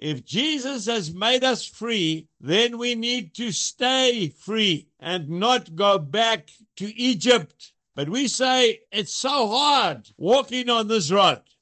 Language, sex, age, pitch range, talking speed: English, male, 60-79, 175-240 Hz, 145 wpm